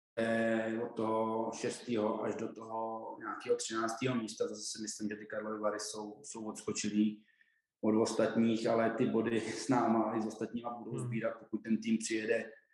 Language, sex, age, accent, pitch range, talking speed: Czech, male, 20-39, native, 105-115 Hz, 165 wpm